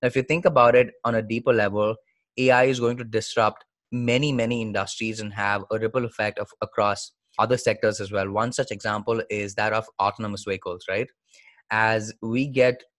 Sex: male